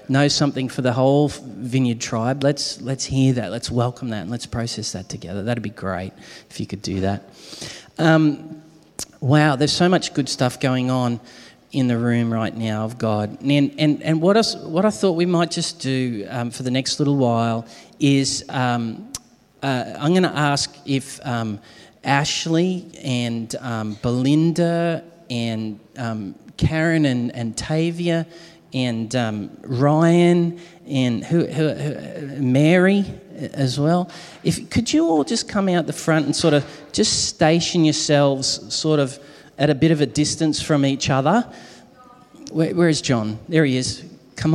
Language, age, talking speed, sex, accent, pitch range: English, 30-49, 165 wpm, male, Australian, 125-170 Hz